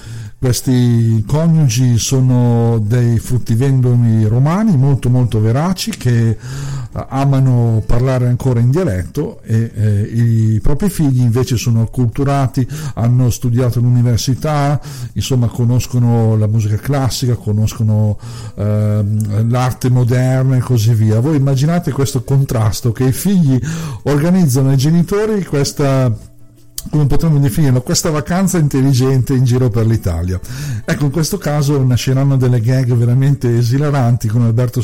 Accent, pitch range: native, 115-140 Hz